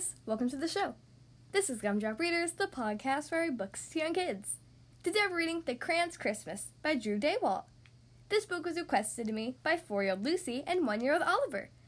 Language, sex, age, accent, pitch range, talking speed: English, female, 10-29, American, 210-350 Hz, 185 wpm